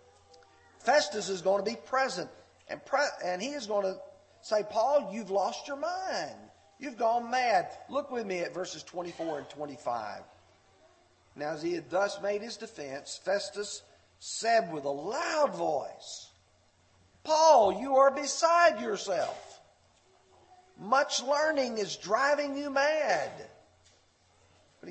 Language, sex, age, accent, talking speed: English, male, 50-69, American, 135 wpm